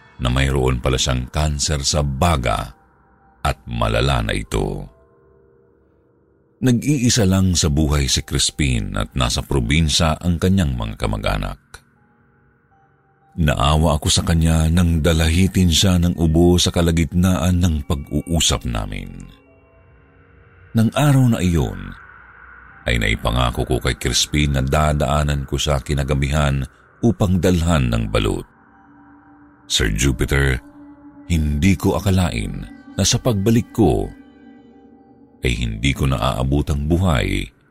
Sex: male